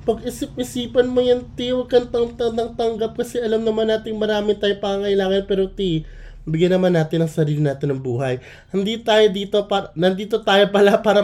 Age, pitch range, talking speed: 20-39, 160-220 Hz, 180 wpm